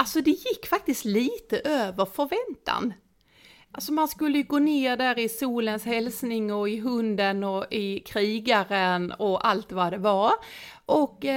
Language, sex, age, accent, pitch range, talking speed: Swedish, female, 30-49, native, 185-275 Hz, 155 wpm